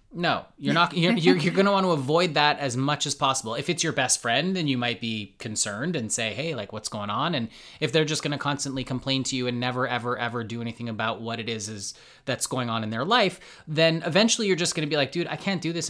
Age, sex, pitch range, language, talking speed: 20-39, male, 130-170 Hz, English, 275 wpm